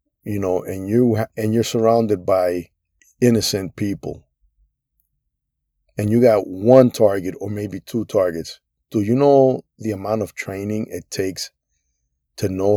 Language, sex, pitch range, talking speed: English, male, 95-115 Hz, 155 wpm